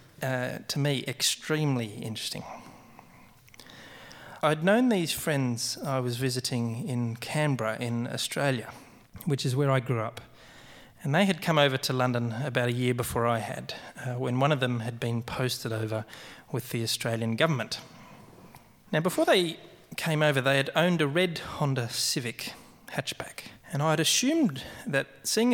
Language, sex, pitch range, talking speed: English, male, 120-155 Hz, 160 wpm